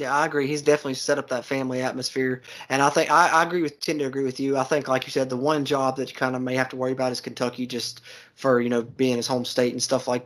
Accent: American